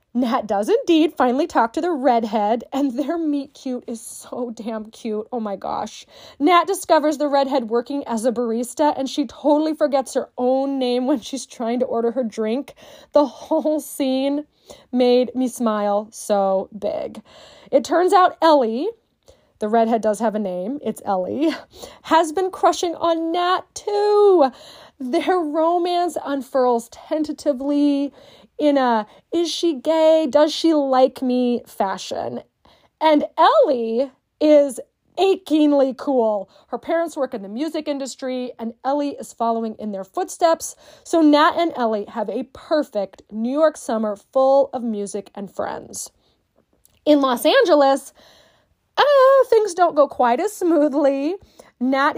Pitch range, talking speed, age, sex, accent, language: 240-315 Hz, 140 wpm, 20-39, female, American, English